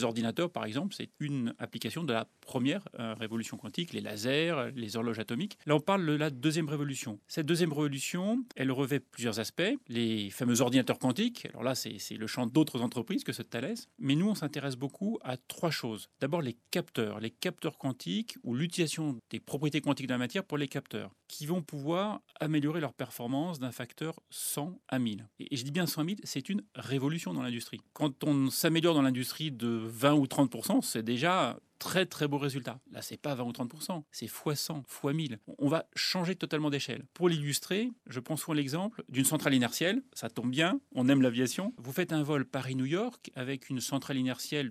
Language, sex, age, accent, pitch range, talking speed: French, male, 30-49, French, 125-160 Hz, 205 wpm